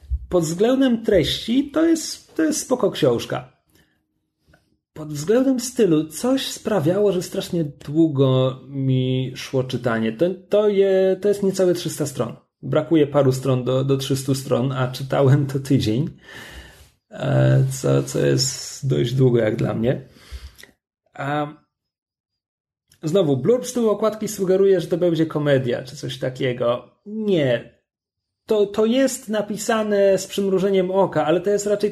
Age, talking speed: 30-49, 130 wpm